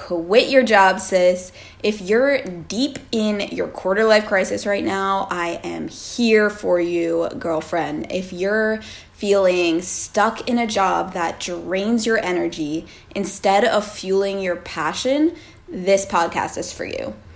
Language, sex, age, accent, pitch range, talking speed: English, female, 20-39, American, 180-220 Hz, 140 wpm